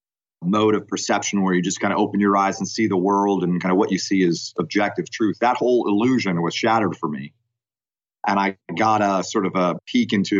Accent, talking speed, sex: American, 230 wpm, male